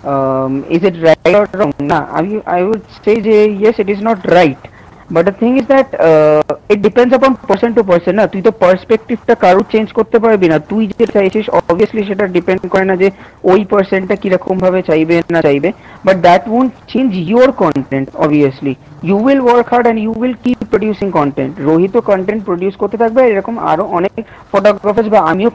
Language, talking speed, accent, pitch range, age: English, 165 wpm, Indian, 180-235 Hz, 40-59